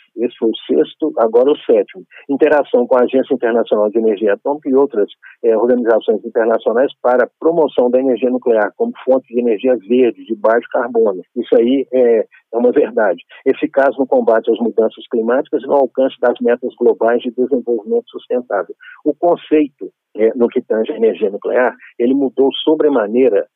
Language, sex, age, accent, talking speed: Portuguese, male, 50-69, Brazilian, 170 wpm